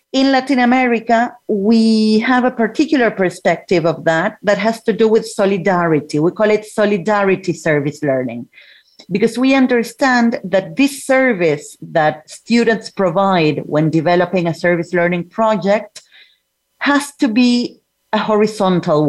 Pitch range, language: 175-230 Hz, English